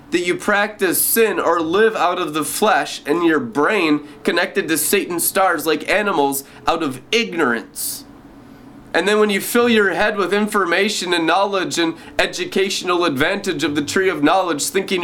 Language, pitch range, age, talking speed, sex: English, 145-215 Hz, 20-39, 170 wpm, male